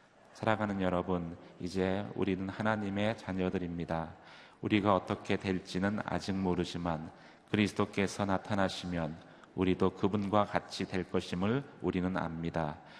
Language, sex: Korean, male